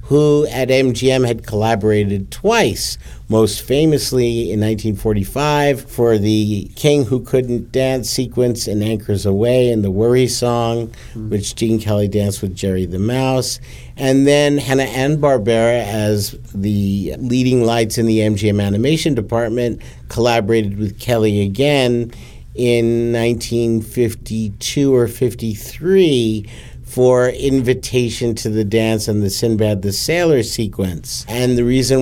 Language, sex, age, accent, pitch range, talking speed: English, male, 50-69, American, 105-125 Hz, 125 wpm